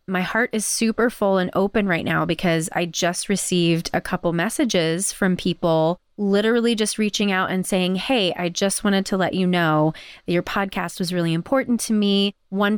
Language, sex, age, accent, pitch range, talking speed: English, female, 30-49, American, 170-210 Hz, 195 wpm